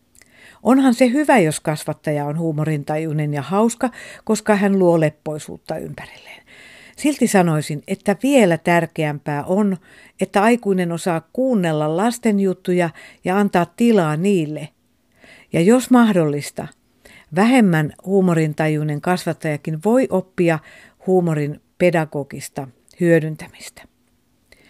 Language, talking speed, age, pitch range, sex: Finnish, 100 wpm, 50-69, 165-225 Hz, female